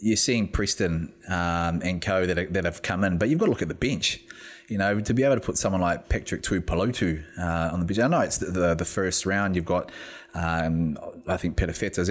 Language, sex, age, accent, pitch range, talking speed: English, male, 20-39, Australian, 90-105 Hz, 250 wpm